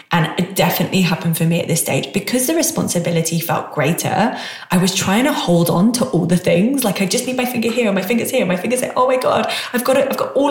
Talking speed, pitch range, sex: 270 wpm, 165-205 Hz, female